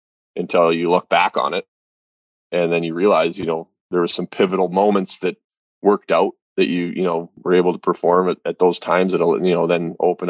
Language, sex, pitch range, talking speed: English, male, 80-90 Hz, 215 wpm